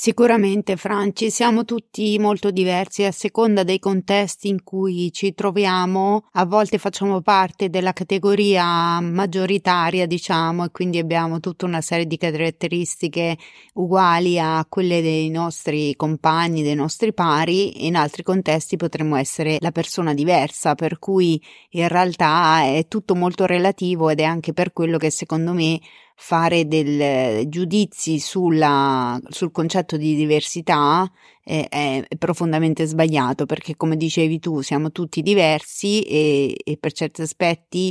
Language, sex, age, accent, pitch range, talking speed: Italian, female, 30-49, native, 160-190 Hz, 135 wpm